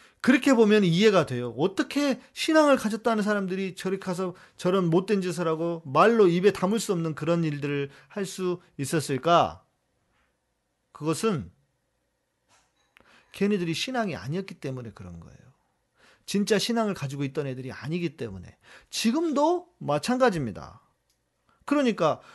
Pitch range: 155-210 Hz